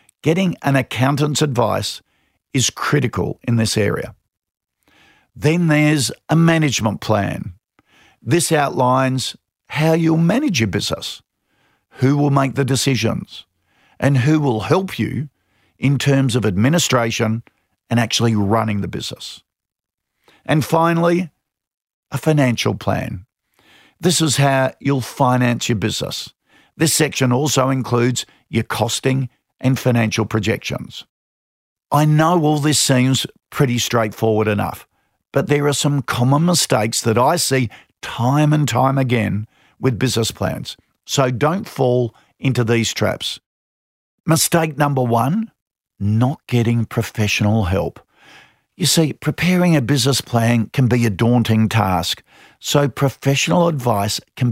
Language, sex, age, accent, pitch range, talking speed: English, male, 50-69, Australian, 115-145 Hz, 125 wpm